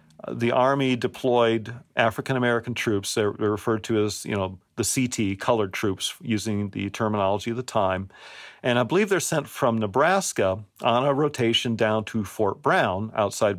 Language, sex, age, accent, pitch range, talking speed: English, male, 40-59, American, 105-125 Hz, 160 wpm